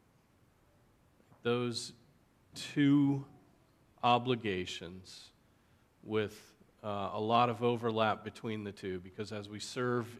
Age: 40-59